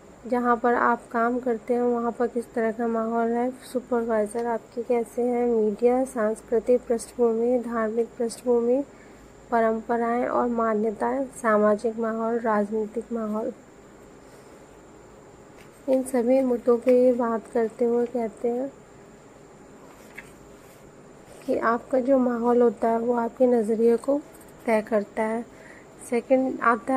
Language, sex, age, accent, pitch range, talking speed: Hindi, female, 30-49, native, 225-245 Hz, 120 wpm